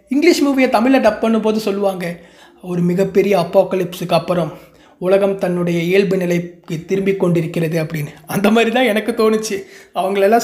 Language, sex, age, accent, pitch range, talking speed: Tamil, male, 20-39, native, 200-255 Hz, 140 wpm